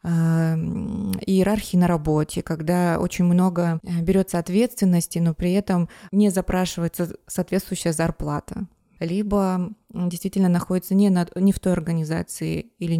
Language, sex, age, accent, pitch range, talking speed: Russian, female, 20-39, native, 170-205 Hz, 110 wpm